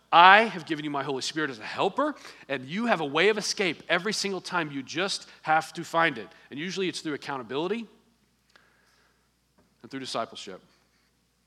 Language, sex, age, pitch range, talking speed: English, male, 40-59, 135-210 Hz, 180 wpm